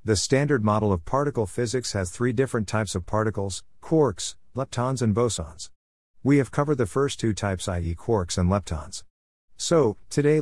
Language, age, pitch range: English, 50-69, 90-120 Hz